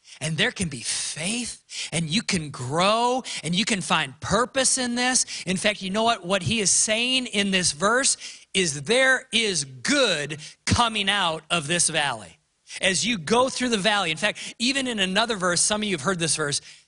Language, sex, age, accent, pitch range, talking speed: English, male, 40-59, American, 155-210 Hz, 200 wpm